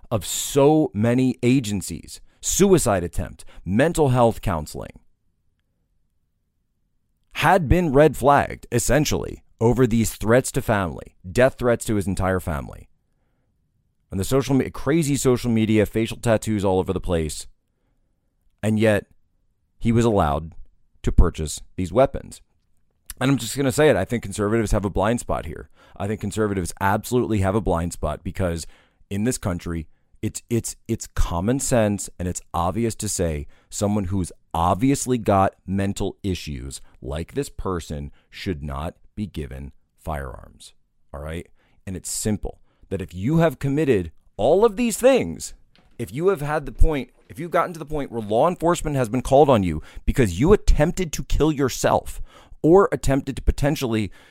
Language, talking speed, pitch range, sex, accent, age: English, 155 wpm, 85-125 Hz, male, American, 40-59